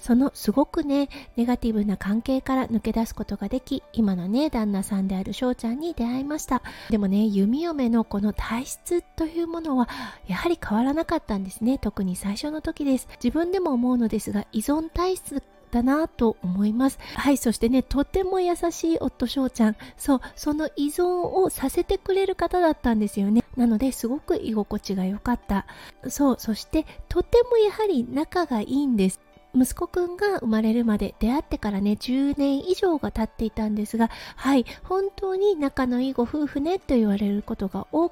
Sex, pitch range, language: female, 220-315 Hz, Japanese